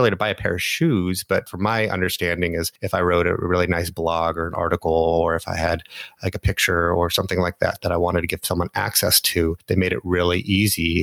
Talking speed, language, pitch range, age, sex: 245 wpm, English, 90-105 Hz, 30-49, male